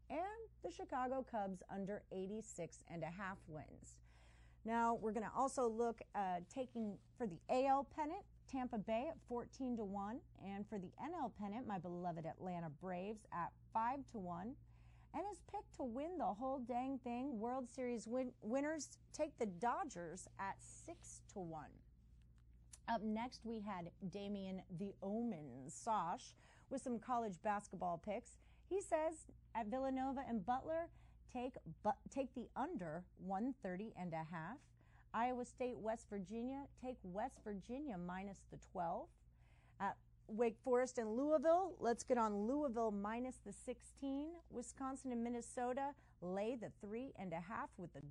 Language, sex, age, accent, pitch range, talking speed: English, female, 40-59, American, 180-255 Hz, 150 wpm